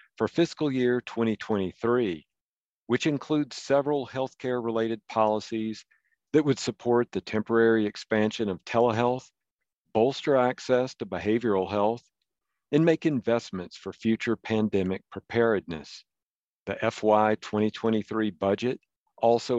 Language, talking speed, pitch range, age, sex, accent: English, 105 wpm, 100-120 Hz, 50-69, male, American